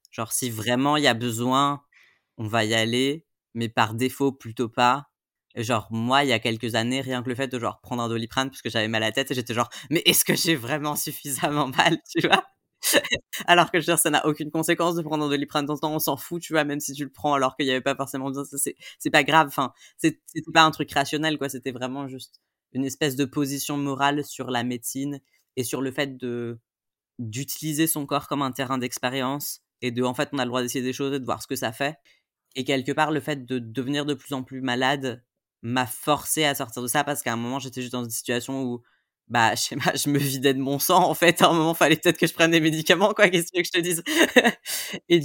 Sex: female